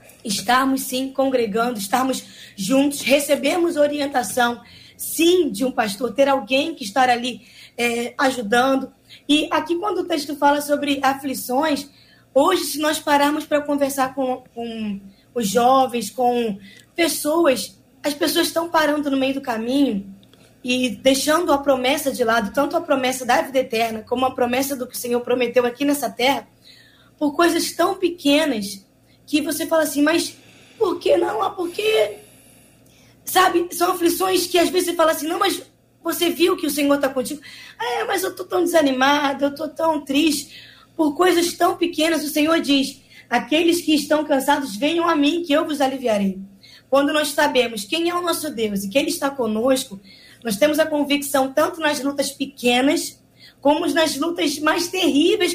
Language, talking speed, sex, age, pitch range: Portuguese, 165 wpm, female, 20-39, 255-320 Hz